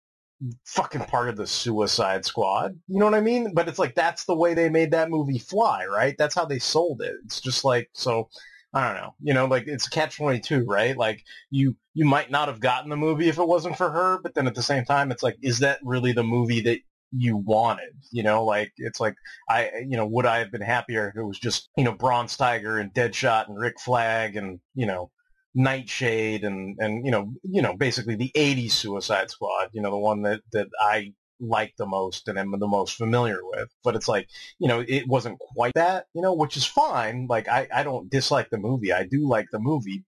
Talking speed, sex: 230 wpm, male